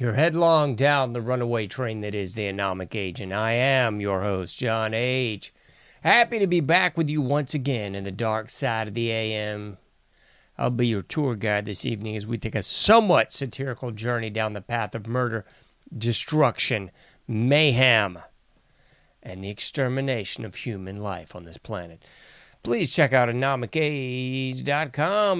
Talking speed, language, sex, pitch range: 155 wpm, English, male, 110-150 Hz